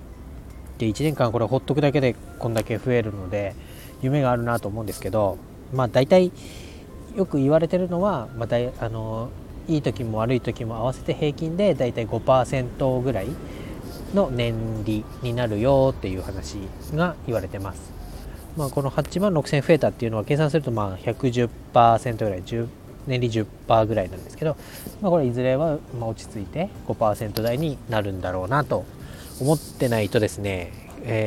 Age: 20-39